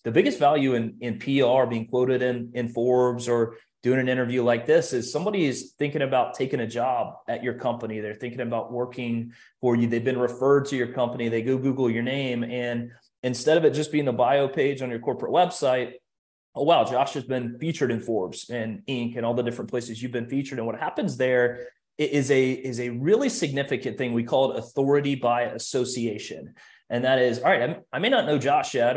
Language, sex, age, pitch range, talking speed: English, male, 30-49, 120-140 Hz, 215 wpm